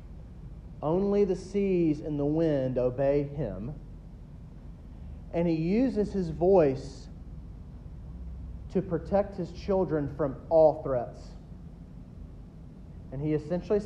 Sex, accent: male, American